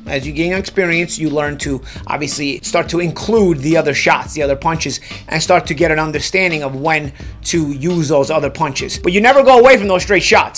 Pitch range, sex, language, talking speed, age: 155-205 Hz, male, English, 220 wpm, 30-49